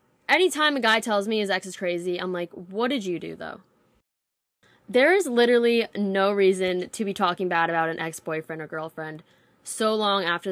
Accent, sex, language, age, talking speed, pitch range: American, female, English, 10-29, 190 wpm, 175-215 Hz